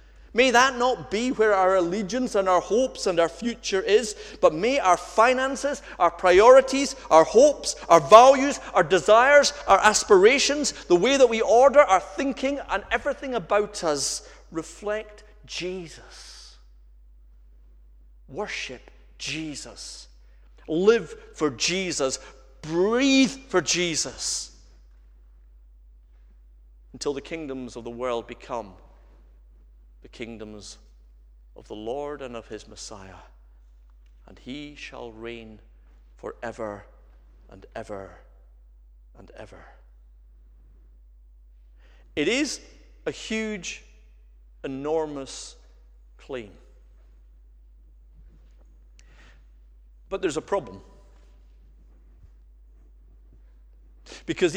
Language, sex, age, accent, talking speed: English, male, 40-59, British, 95 wpm